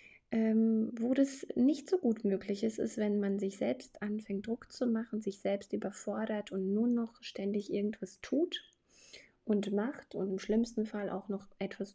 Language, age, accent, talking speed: German, 20-39, German, 175 wpm